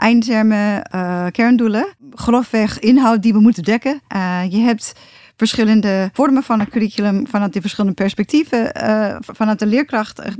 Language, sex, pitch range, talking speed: Dutch, female, 195-235 Hz, 155 wpm